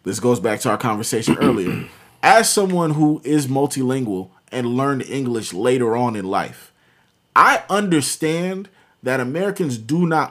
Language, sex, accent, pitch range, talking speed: English, male, American, 125-160 Hz, 145 wpm